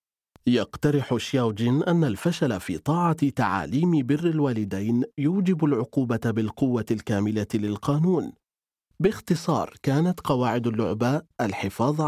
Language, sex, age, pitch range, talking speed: Arabic, male, 40-59, 110-150 Hz, 95 wpm